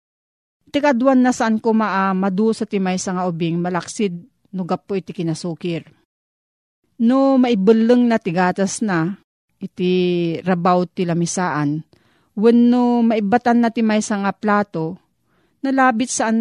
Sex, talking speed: female, 120 wpm